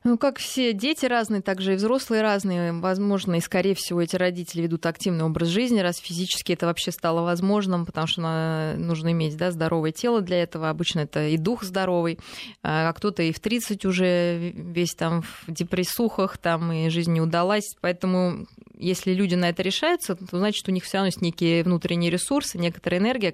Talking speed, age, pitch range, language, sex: 185 wpm, 20-39, 165-195 Hz, Russian, female